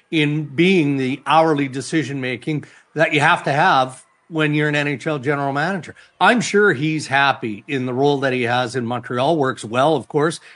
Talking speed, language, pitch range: 190 wpm, English, 140-170 Hz